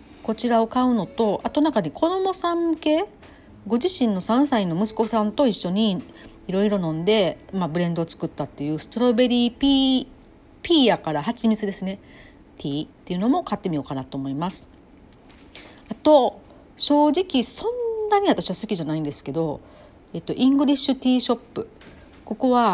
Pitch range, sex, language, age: 155-255 Hz, female, Japanese, 40-59